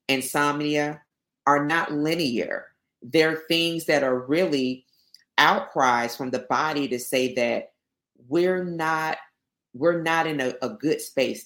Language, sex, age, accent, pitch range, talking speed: English, female, 40-59, American, 130-155 Hz, 130 wpm